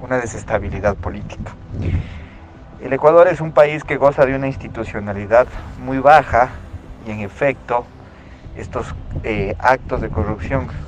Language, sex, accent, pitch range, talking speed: Spanish, male, Mexican, 90-125 Hz, 125 wpm